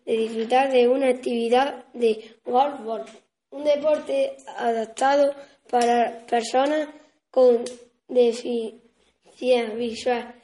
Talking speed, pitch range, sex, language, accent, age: 85 wpm, 235-275 Hz, female, Spanish, Spanish, 10-29